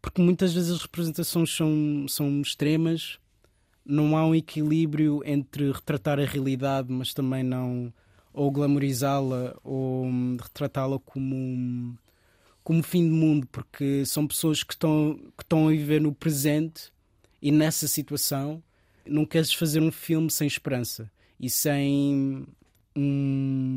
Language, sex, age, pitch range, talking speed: Portuguese, male, 20-39, 130-155 Hz, 130 wpm